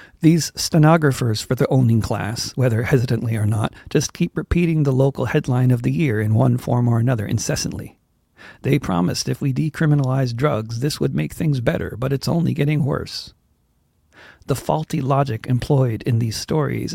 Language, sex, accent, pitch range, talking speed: English, male, American, 110-140 Hz, 170 wpm